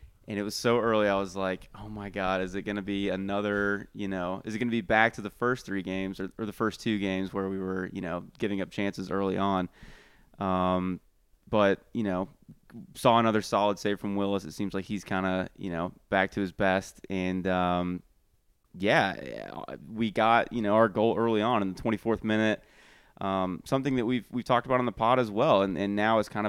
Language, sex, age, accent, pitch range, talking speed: English, male, 20-39, American, 95-115 Hz, 225 wpm